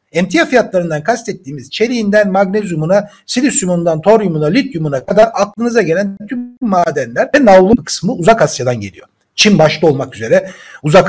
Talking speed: 130 wpm